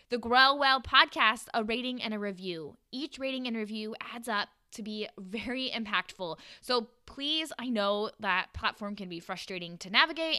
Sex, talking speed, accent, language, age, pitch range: female, 175 wpm, American, English, 10-29, 205-275 Hz